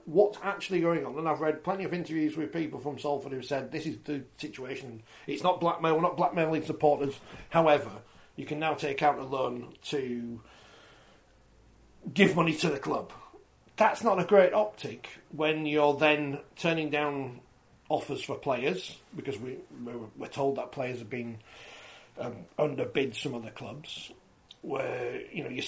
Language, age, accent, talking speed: English, 40-59, British, 165 wpm